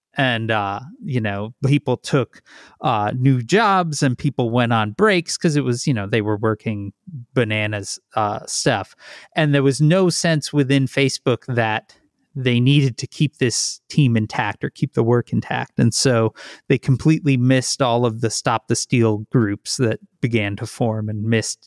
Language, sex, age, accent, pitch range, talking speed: English, male, 30-49, American, 115-145 Hz, 175 wpm